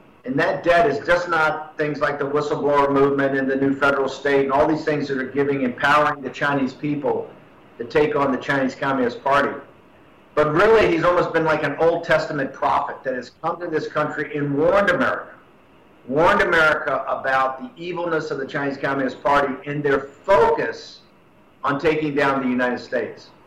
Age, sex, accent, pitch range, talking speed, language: 50-69, male, American, 140-160 Hz, 185 wpm, English